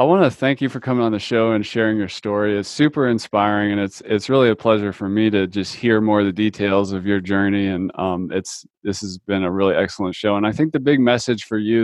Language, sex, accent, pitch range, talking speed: English, male, American, 105-125 Hz, 270 wpm